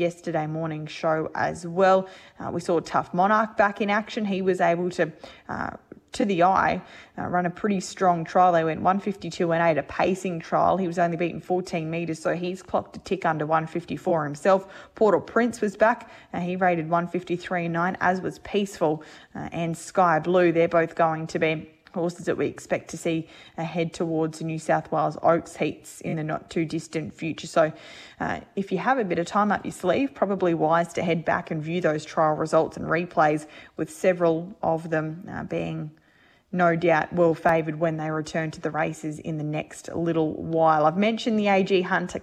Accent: Australian